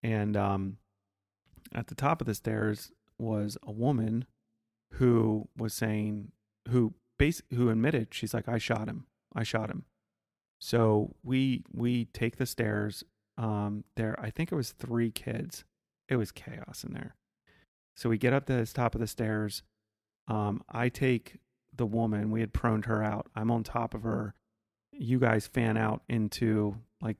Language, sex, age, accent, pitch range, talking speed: English, male, 30-49, American, 110-120 Hz, 170 wpm